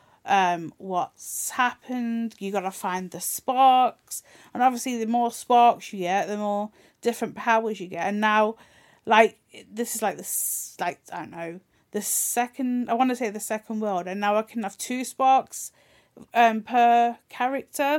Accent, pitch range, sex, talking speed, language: British, 200-245 Hz, female, 175 wpm, English